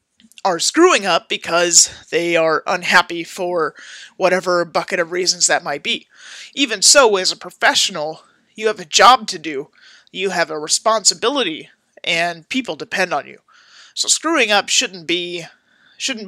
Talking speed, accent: 150 wpm, American